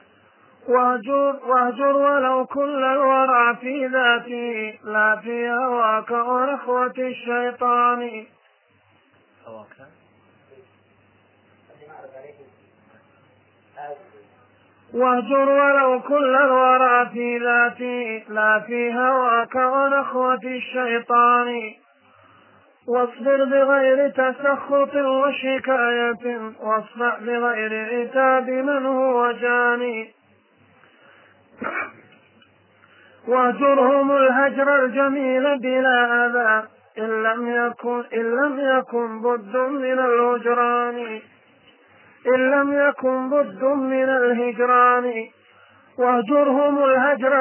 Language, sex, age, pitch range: Arabic, male, 30-49, 235-265 Hz